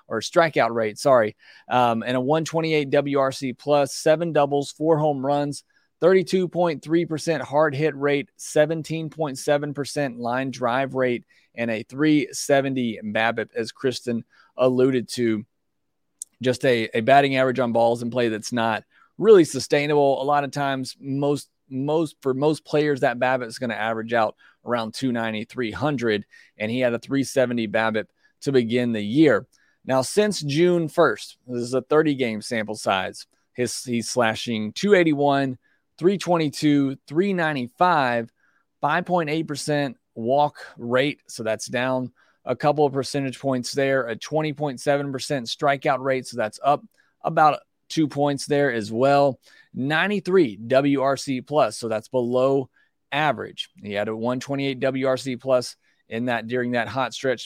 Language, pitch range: English, 120-150 Hz